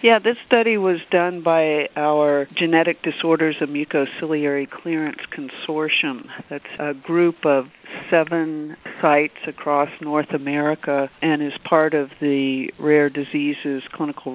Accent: American